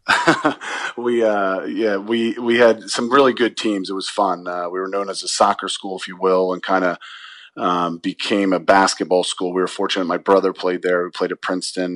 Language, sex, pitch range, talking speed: English, male, 90-95 Hz, 210 wpm